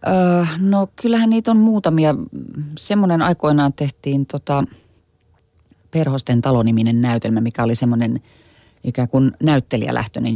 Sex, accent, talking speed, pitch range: female, native, 105 wpm, 115-135 Hz